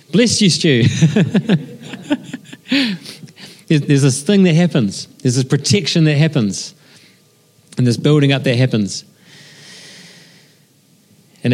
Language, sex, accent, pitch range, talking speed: English, male, Australian, 125-165 Hz, 110 wpm